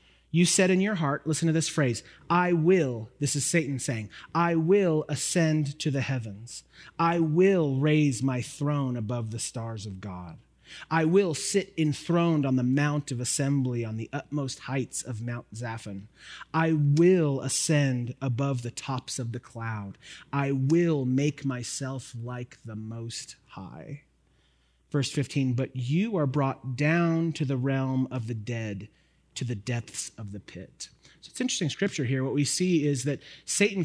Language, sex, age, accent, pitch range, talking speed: English, male, 30-49, American, 130-160 Hz, 165 wpm